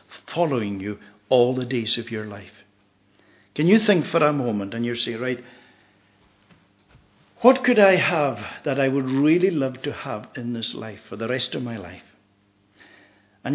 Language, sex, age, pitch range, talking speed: English, male, 60-79, 100-145 Hz, 175 wpm